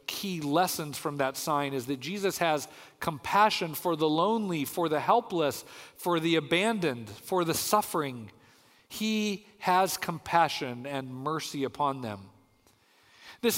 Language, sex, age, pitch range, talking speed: English, male, 40-59, 135-185 Hz, 135 wpm